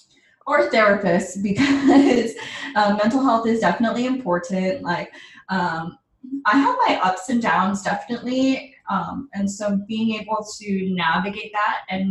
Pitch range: 180-220 Hz